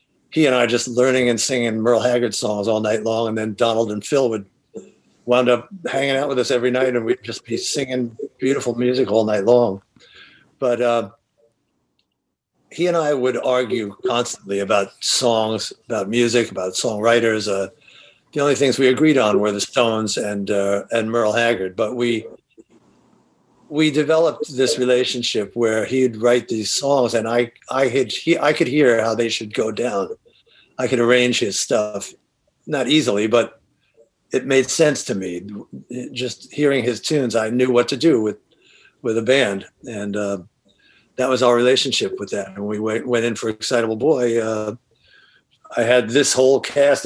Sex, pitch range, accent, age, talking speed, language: male, 110-130 Hz, American, 50-69, 175 wpm, English